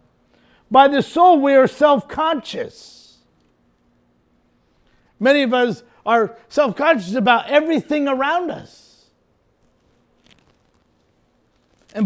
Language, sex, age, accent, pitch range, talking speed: English, male, 50-69, American, 225-300 Hz, 80 wpm